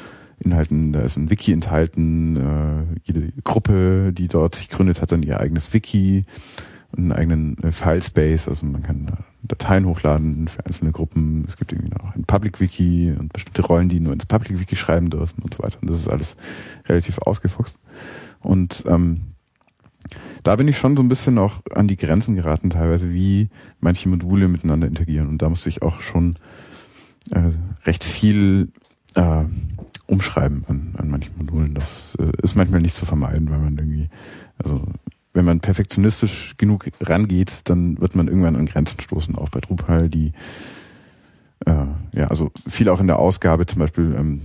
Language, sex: German, male